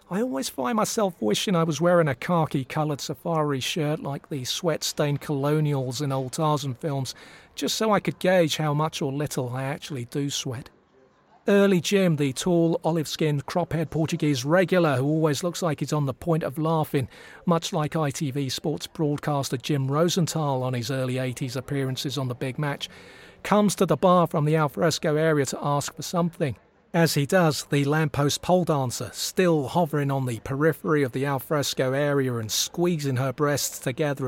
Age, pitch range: 40-59, 135-165 Hz